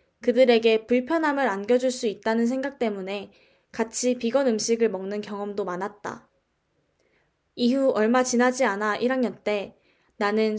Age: 20-39